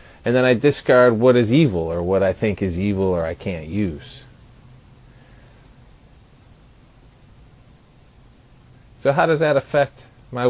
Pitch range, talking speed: 105-130 Hz, 130 wpm